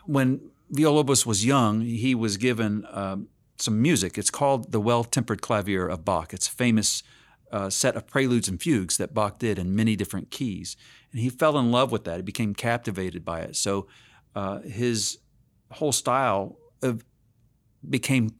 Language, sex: English, male